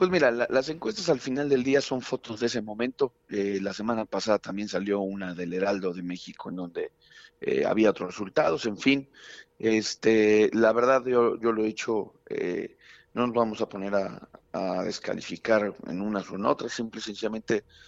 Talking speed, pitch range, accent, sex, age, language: 195 wpm, 100-120 Hz, Mexican, male, 40-59, Spanish